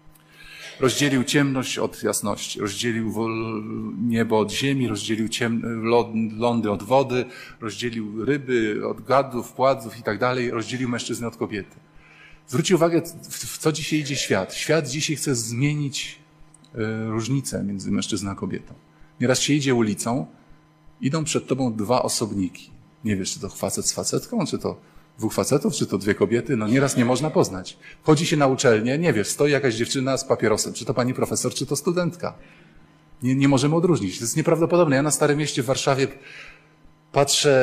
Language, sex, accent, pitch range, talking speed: Polish, male, native, 110-135 Hz, 165 wpm